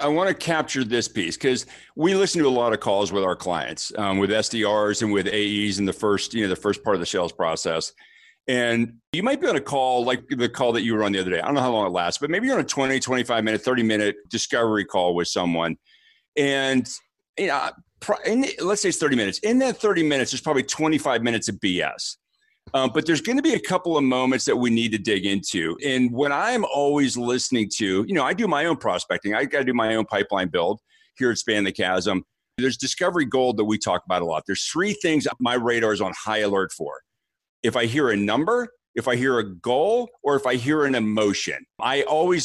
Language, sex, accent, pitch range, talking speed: English, male, American, 110-145 Hz, 240 wpm